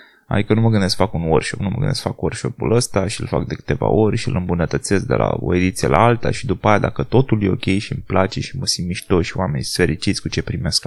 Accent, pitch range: native, 110-145 Hz